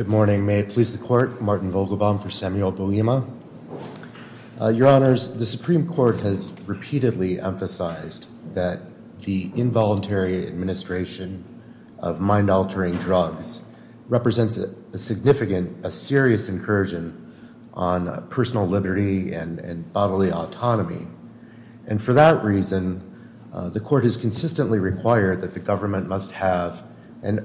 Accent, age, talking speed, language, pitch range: American, 30-49, 130 wpm, English, 95-115 Hz